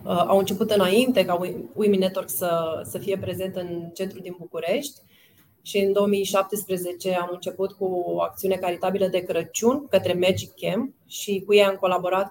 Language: Romanian